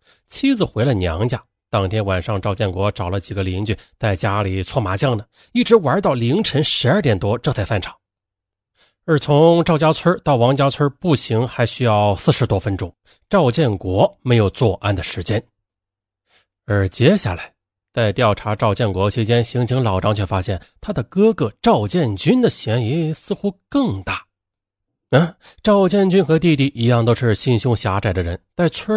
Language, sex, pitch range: Chinese, male, 100-160 Hz